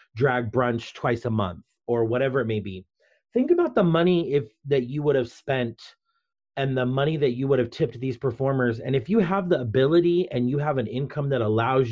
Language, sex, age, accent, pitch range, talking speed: English, male, 30-49, American, 120-150 Hz, 215 wpm